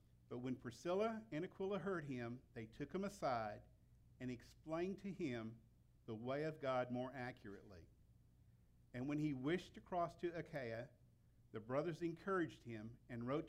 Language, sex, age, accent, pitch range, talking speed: English, male, 50-69, American, 120-170 Hz, 155 wpm